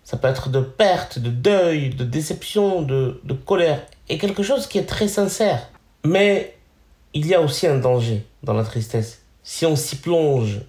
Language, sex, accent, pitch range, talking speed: French, male, French, 120-165 Hz, 185 wpm